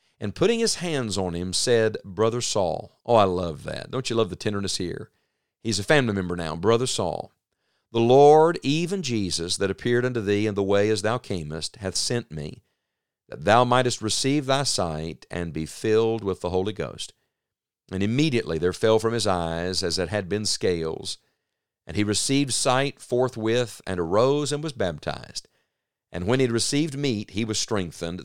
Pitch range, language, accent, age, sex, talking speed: 95-125 Hz, English, American, 50-69, male, 185 wpm